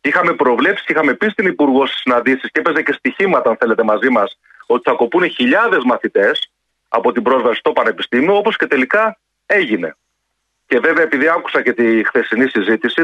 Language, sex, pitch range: Greek, male, 125-190 Hz